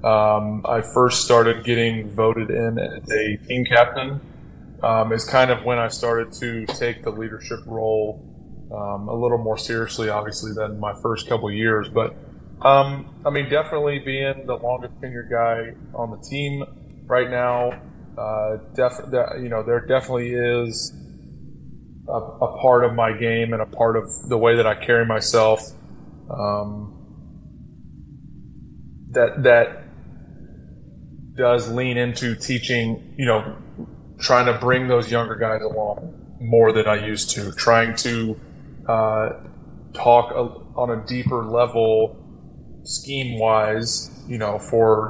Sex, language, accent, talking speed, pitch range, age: male, English, American, 140 wpm, 110-125 Hz, 20-39